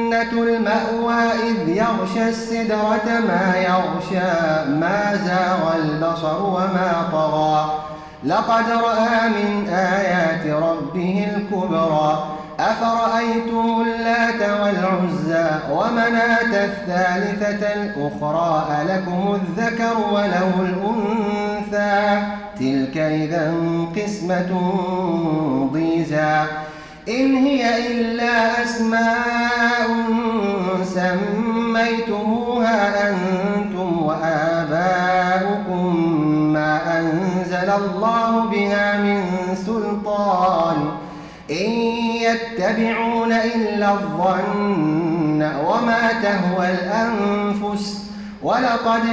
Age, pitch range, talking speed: 30-49, 170-230 Hz, 65 wpm